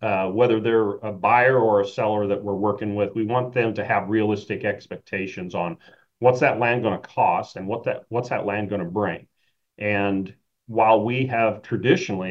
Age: 40-59